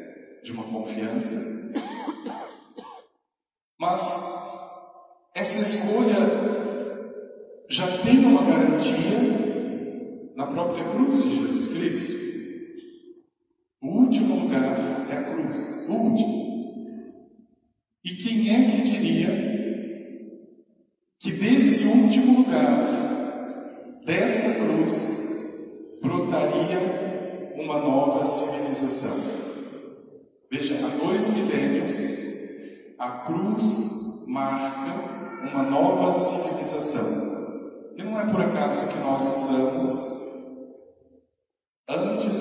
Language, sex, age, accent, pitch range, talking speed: Portuguese, male, 50-69, Brazilian, 180-275 Hz, 80 wpm